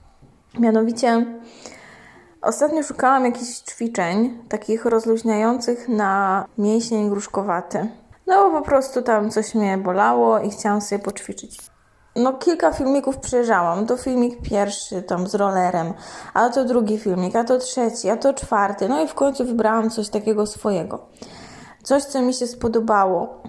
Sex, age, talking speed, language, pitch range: female, 20-39, 140 wpm, Polish, 210-250 Hz